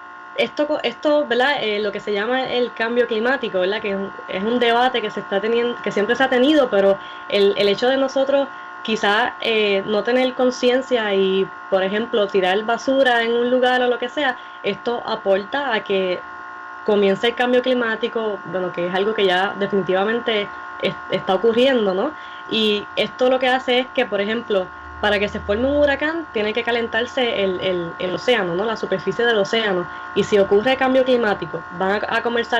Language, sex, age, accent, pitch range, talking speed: Spanish, female, 20-39, American, 195-245 Hz, 195 wpm